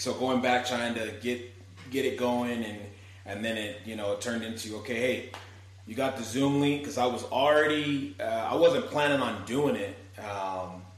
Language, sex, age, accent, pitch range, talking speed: English, male, 30-49, American, 95-120 Hz, 200 wpm